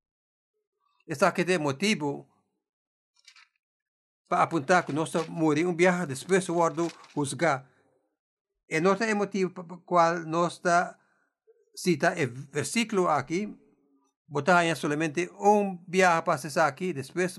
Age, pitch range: 60-79, 135-185 Hz